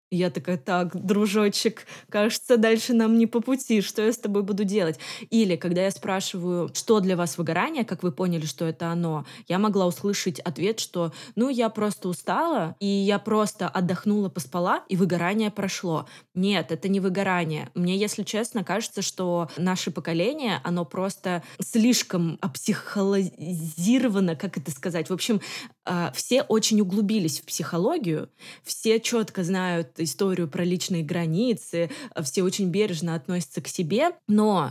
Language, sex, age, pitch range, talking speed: Russian, female, 20-39, 170-200 Hz, 150 wpm